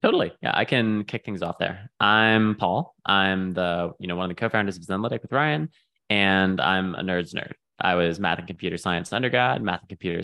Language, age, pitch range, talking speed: English, 20-39, 85-95 Hz, 215 wpm